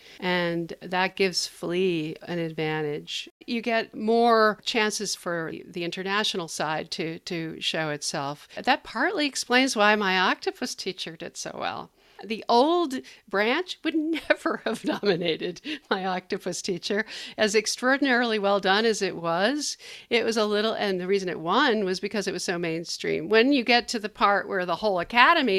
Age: 50-69